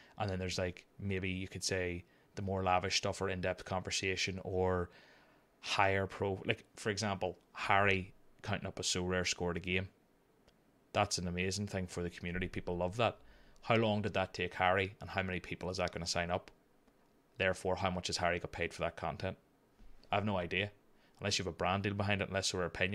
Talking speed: 215 wpm